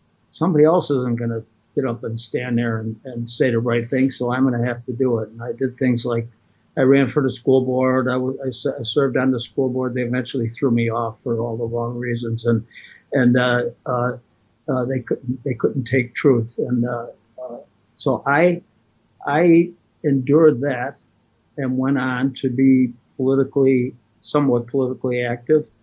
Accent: American